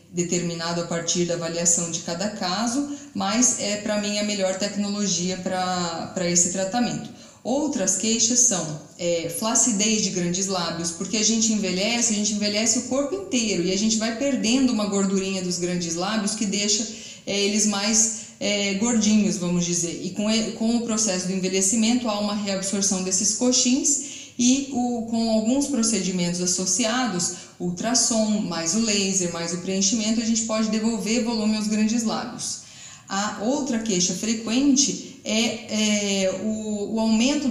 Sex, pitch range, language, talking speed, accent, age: female, 185-225 Hz, Portuguese, 160 wpm, Brazilian, 20-39